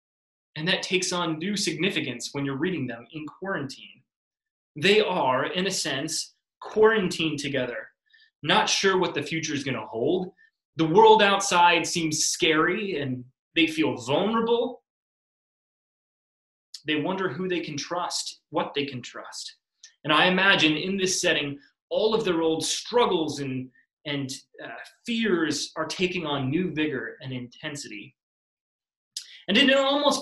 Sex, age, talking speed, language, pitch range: male, 20-39, 145 wpm, English, 145-200 Hz